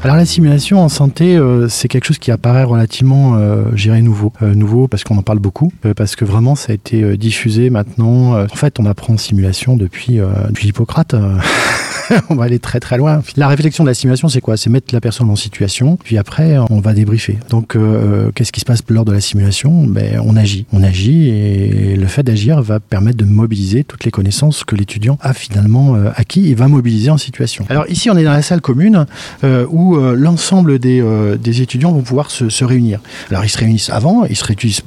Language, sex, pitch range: French, male, 110-140 Hz